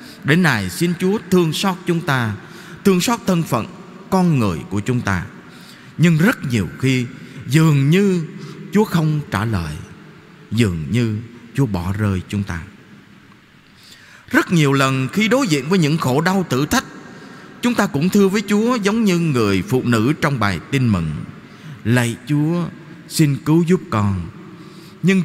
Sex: male